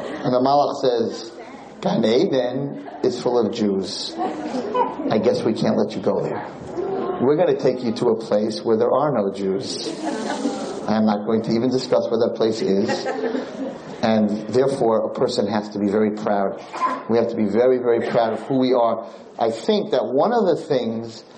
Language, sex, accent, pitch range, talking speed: English, male, American, 115-155 Hz, 190 wpm